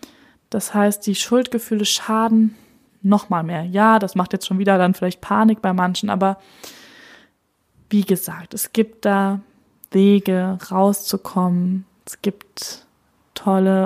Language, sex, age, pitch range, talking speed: German, female, 20-39, 180-220 Hz, 125 wpm